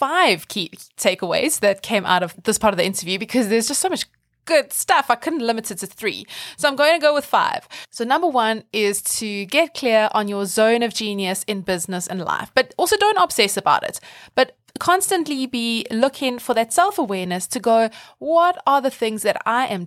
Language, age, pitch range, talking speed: English, 20-39, 205-260 Hz, 210 wpm